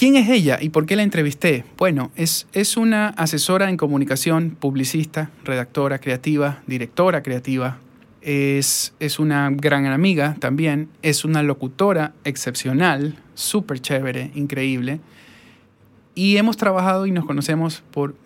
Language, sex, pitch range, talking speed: Spanish, male, 135-160 Hz, 130 wpm